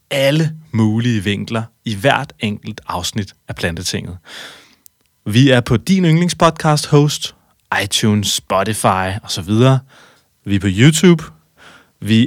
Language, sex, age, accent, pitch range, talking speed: Danish, male, 30-49, native, 110-145 Hz, 115 wpm